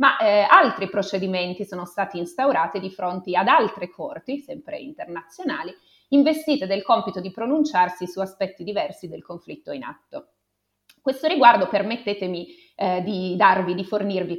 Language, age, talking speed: Italian, 30-49, 140 wpm